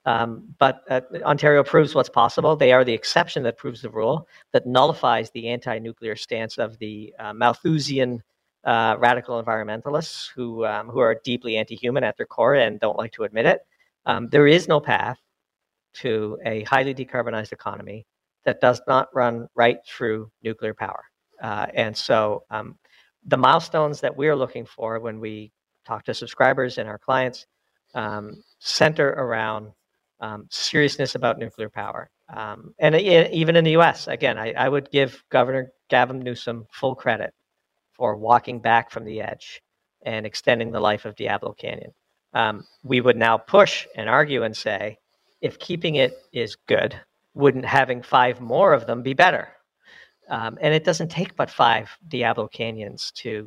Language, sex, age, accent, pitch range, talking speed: English, male, 50-69, American, 110-135 Hz, 165 wpm